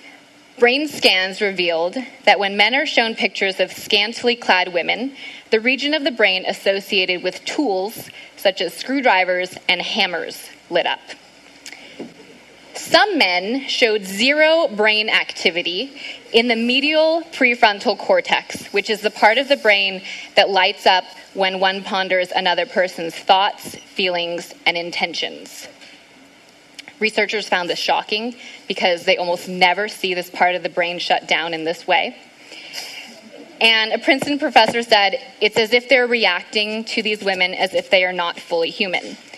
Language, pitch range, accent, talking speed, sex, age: English, 185-255 Hz, American, 145 wpm, female, 20-39